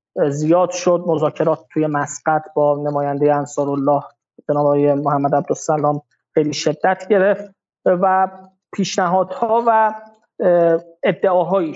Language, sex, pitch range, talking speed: Persian, male, 155-195 Hz, 100 wpm